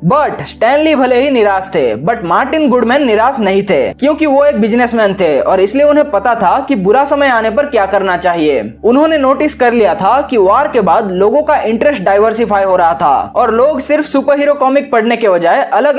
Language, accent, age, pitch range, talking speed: Hindi, native, 20-39, 210-285 Hz, 210 wpm